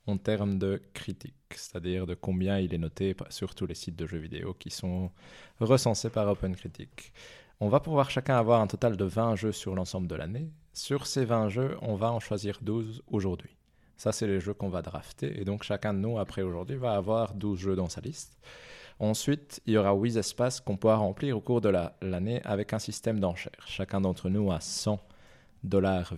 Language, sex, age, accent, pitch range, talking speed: French, male, 20-39, French, 95-115 Hz, 210 wpm